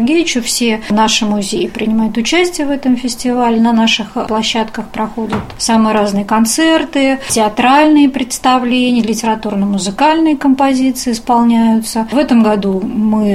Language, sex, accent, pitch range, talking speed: Russian, female, native, 215-255 Hz, 110 wpm